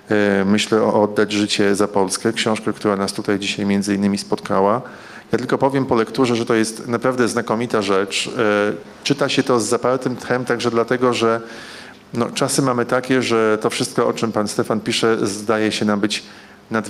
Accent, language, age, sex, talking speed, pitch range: native, Polish, 40-59, male, 180 wpm, 105-125 Hz